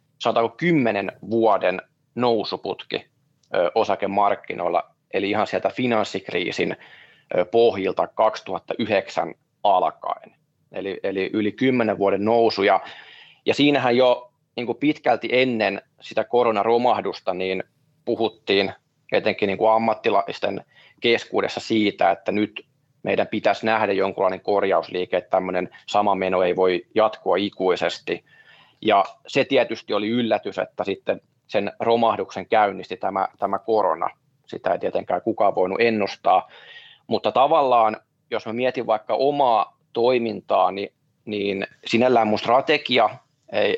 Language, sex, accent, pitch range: Finnish, male, native, 100-120 Hz